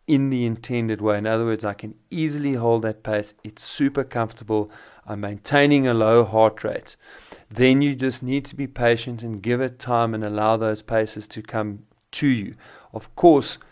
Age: 40-59